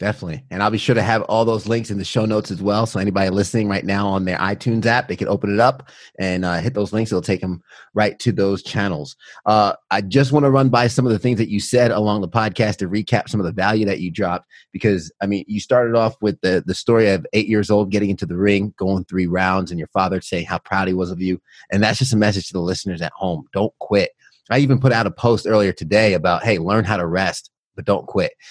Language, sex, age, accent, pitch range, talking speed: English, male, 30-49, American, 90-110 Hz, 270 wpm